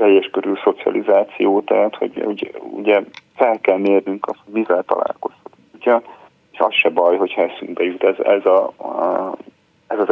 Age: 30-49